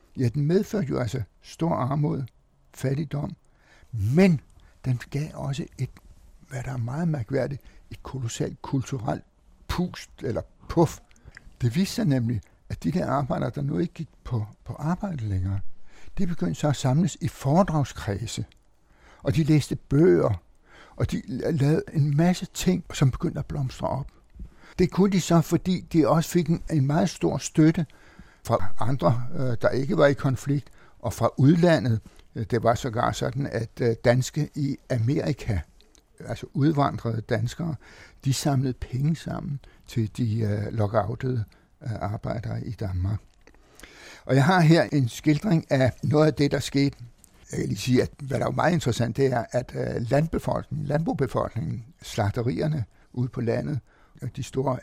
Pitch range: 120-155 Hz